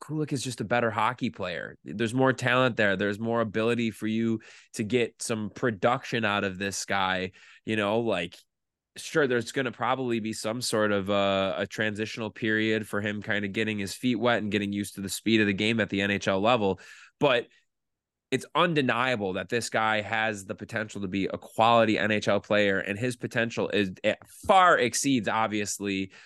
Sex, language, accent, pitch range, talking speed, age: male, English, American, 105-125 Hz, 190 wpm, 20-39